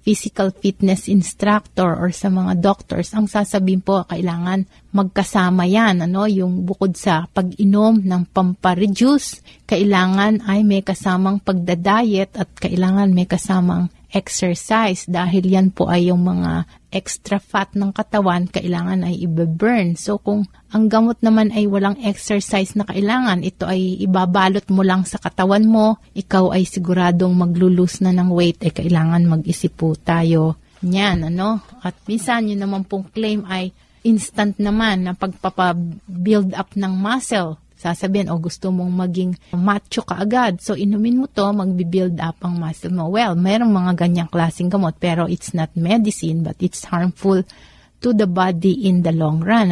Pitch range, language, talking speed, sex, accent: 175-205 Hz, Filipino, 150 wpm, female, native